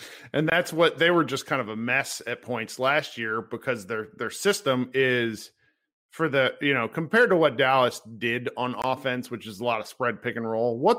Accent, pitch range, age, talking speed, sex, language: American, 125-195 Hz, 40-59, 220 wpm, male, English